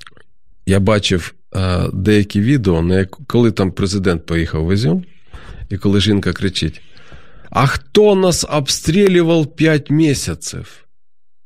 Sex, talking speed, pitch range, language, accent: male, 115 wpm, 90-120 Hz, Ukrainian, native